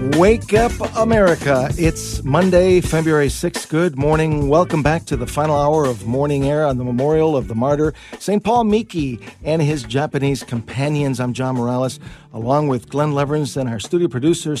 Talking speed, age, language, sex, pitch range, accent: 175 wpm, 50-69, English, male, 125-160 Hz, American